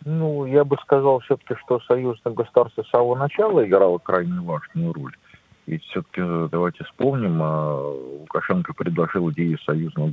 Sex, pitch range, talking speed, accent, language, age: male, 85-135 Hz, 135 wpm, native, Russian, 40-59